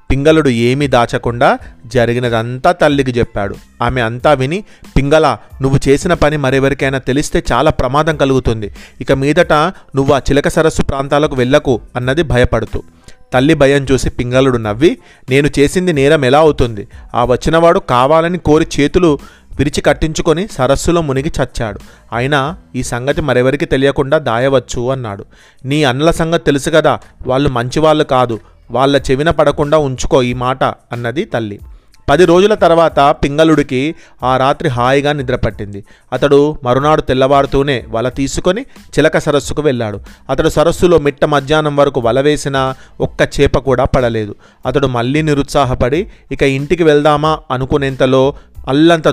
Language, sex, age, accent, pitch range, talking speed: Telugu, male, 30-49, native, 125-155 Hz, 130 wpm